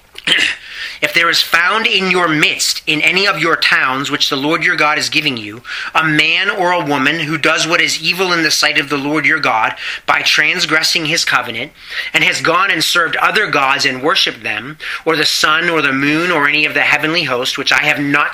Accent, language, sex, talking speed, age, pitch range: American, English, male, 225 wpm, 30-49, 145-170 Hz